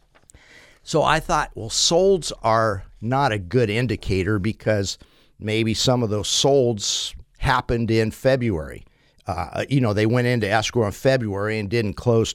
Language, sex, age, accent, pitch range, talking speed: English, male, 50-69, American, 105-135 Hz, 150 wpm